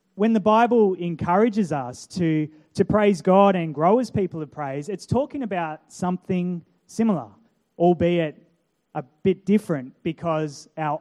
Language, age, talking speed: English, 20-39, 140 wpm